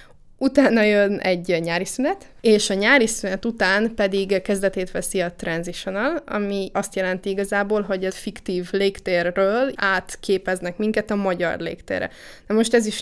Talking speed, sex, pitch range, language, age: 150 wpm, female, 185-215 Hz, English, 20-39